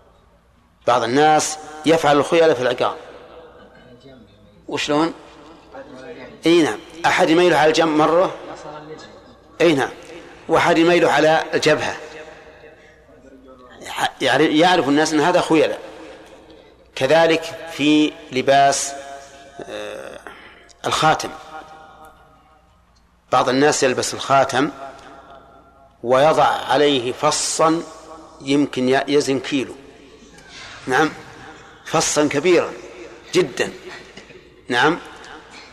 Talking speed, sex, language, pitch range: 70 wpm, male, Arabic, 140-160 Hz